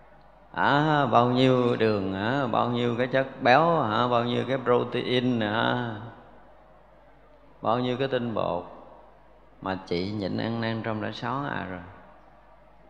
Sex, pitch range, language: male, 105-135 Hz, Vietnamese